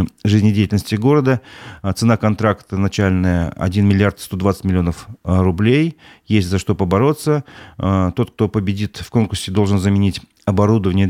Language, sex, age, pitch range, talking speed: Russian, male, 40-59, 95-120 Hz, 120 wpm